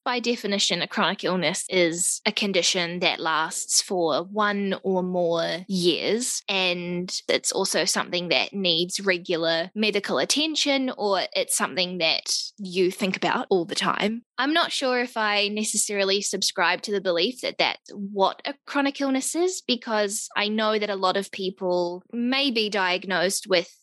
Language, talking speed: English, 160 wpm